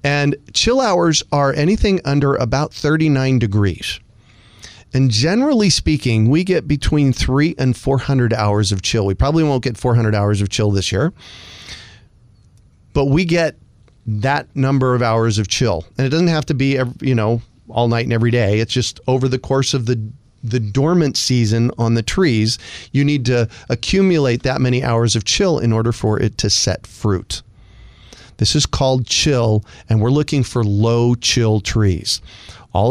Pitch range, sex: 110-140 Hz, male